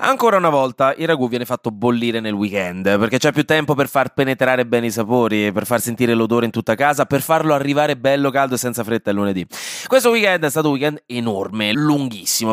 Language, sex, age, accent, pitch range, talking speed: Italian, male, 20-39, native, 115-150 Hz, 215 wpm